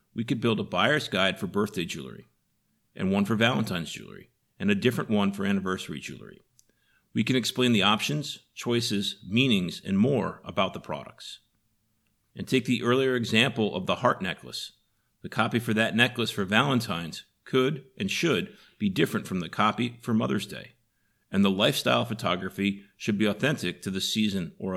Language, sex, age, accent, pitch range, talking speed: English, male, 50-69, American, 105-125 Hz, 170 wpm